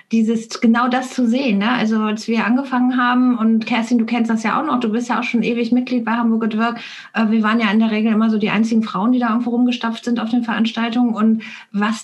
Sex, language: female, German